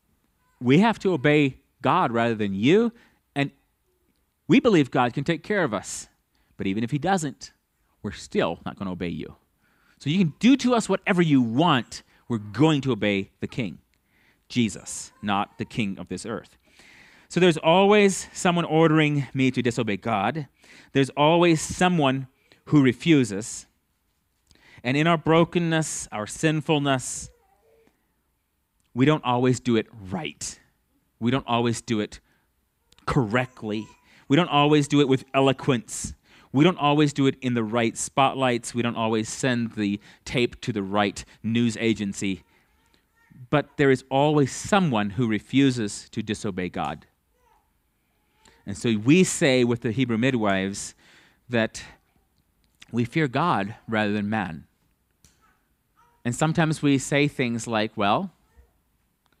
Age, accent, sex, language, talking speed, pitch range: 30-49, American, male, English, 145 wpm, 105-150 Hz